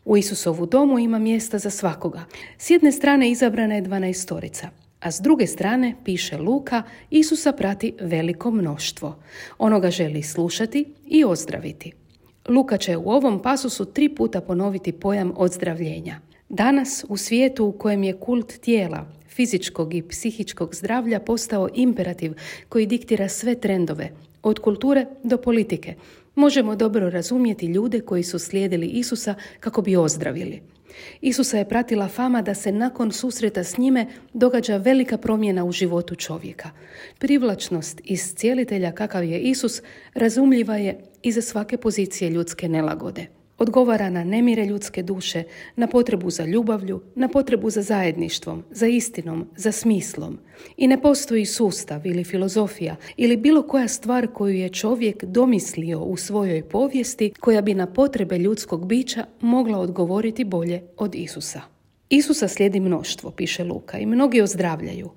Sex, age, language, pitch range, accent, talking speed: female, 40-59, Croatian, 180-240 Hz, native, 145 wpm